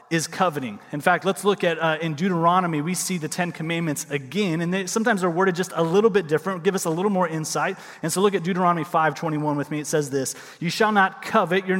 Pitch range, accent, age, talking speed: 170-205 Hz, American, 30-49, 240 wpm